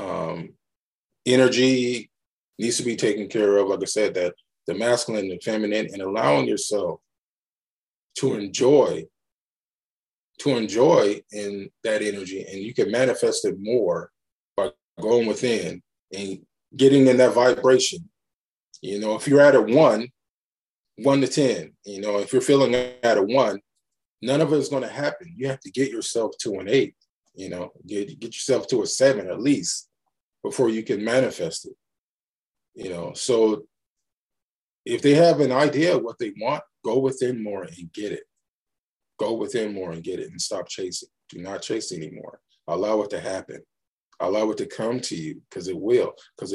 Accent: American